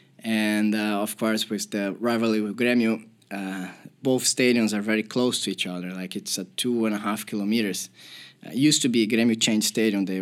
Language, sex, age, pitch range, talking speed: Finnish, male, 20-39, 110-125 Hz, 205 wpm